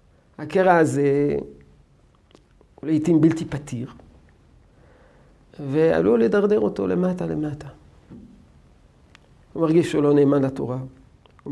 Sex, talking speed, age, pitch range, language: male, 95 wpm, 50-69, 140-190 Hz, Hebrew